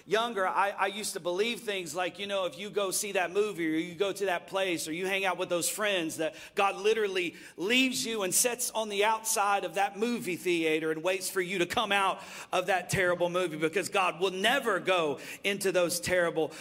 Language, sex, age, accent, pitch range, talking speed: English, male, 40-59, American, 180-225 Hz, 225 wpm